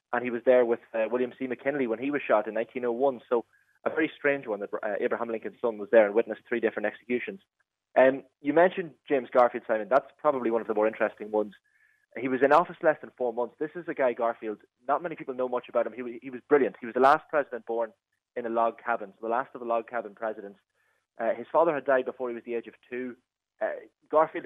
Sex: male